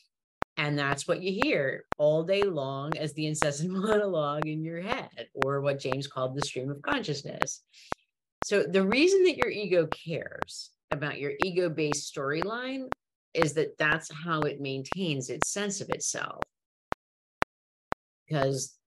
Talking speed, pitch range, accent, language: 145 wpm, 140-175 Hz, American, English